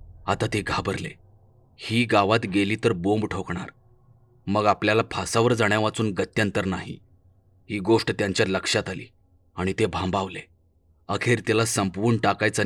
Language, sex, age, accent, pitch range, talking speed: Marathi, male, 30-49, native, 95-115 Hz, 130 wpm